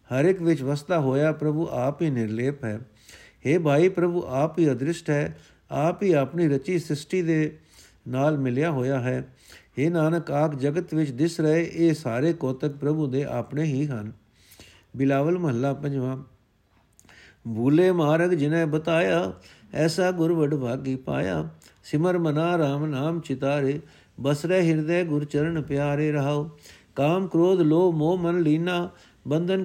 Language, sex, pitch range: Punjabi, male, 135-165 Hz